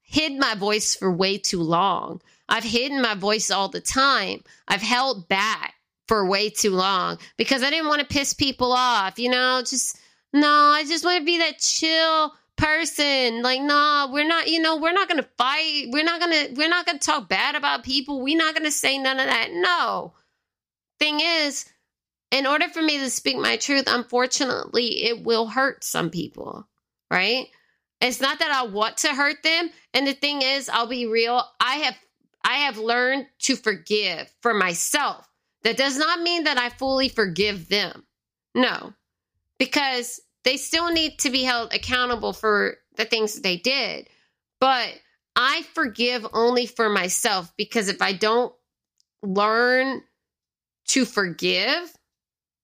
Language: English